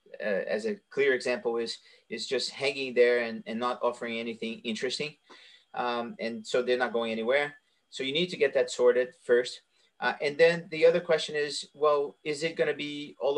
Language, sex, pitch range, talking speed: English, male, 130-185 Hz, 200 wpm